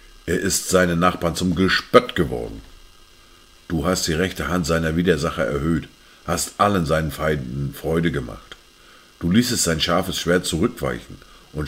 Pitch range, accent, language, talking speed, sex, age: 80-100 Hz, German, German, 145 wpm, male, 50-69